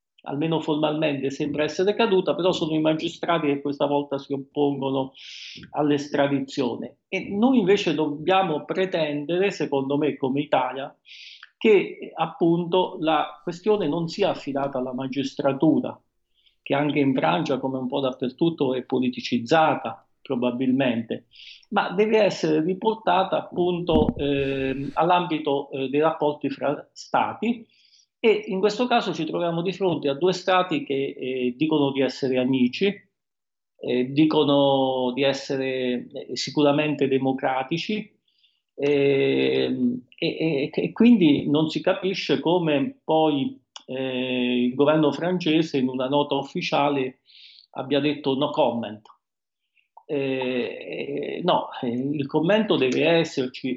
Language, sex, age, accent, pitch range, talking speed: Italian, male, 50-69, native, 135-170 Hz, 115 wpm